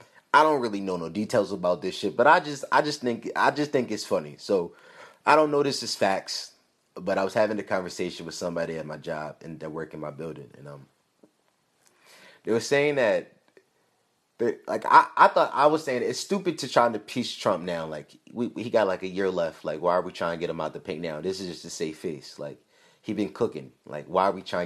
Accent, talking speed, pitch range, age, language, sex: American, 250 wpm, 90-145 Hz, 30-49, English, male